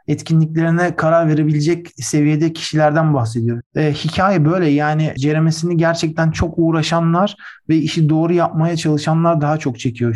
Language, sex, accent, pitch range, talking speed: Turkish, male, native, 145-165 Hz, 130 wpm